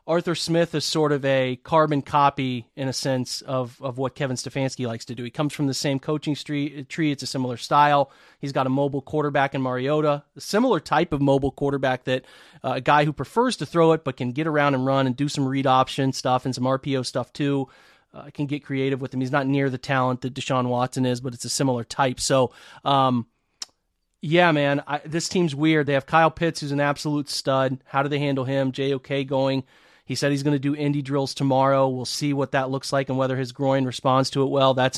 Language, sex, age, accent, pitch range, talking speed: English, male, 30-49, American, 130-150 Hz, 235 wpm